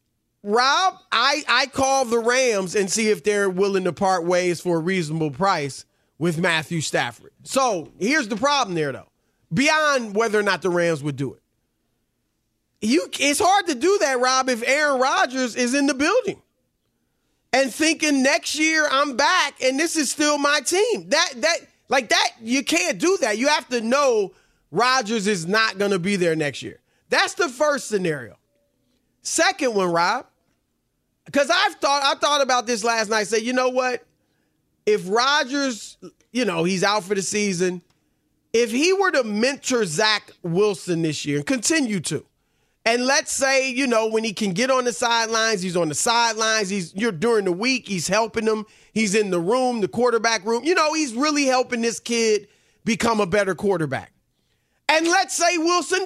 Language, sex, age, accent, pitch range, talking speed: English, male, 30-49, American, 200-295 Hz, 185 wpm